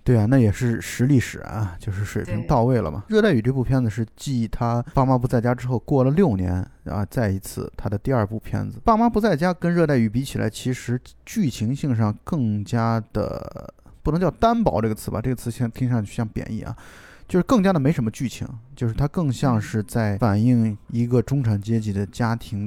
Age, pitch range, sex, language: 20-39, 110-135 Hz, male, Chinese